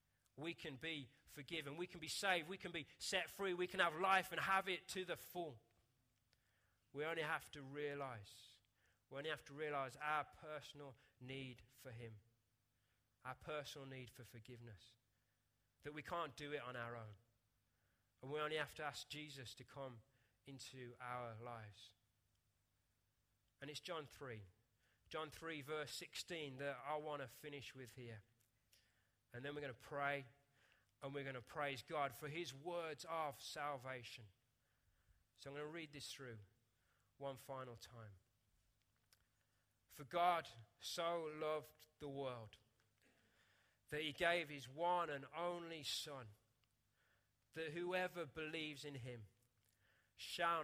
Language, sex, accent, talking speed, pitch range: English, male, British, 150 wpm, 110-150 Hz